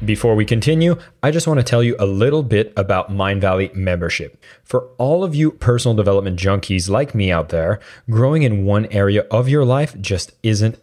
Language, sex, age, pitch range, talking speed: English, male, 30-49, 100-125 Hz, 195 wpm